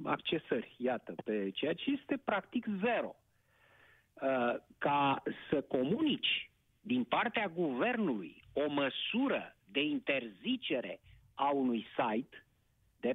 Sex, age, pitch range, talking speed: male, 50-69, 155-250 Hz, 105 wpm